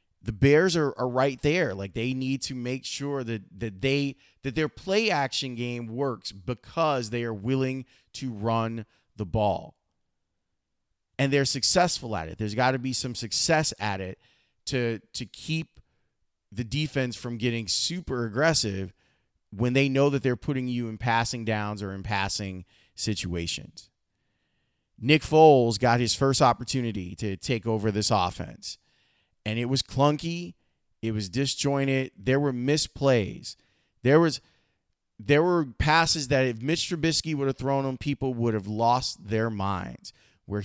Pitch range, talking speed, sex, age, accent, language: 105-135 Hz, 155 wpm, male, 30-49, American, English